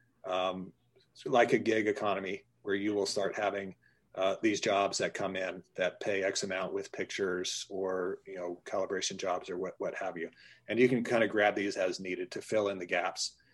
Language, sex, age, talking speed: English, male, 30-49, 210 wpm